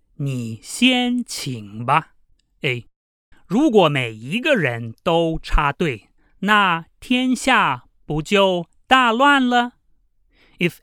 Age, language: 30-49, English